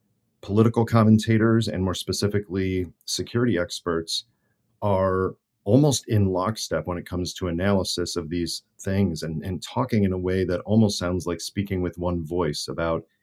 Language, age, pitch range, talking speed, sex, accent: English, 40-59, 85-110 Hz, 155 wpm, male, American